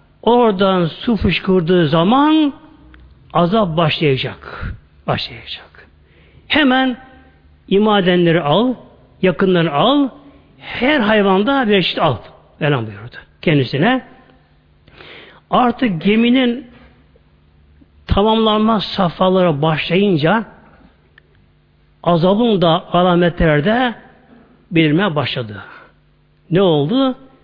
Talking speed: 70 wpm